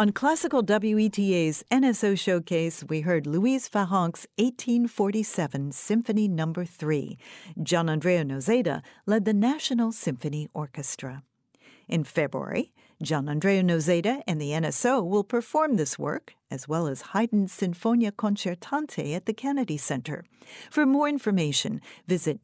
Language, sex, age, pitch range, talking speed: English, female, 50-69, 155-220 Hz, 125 wpm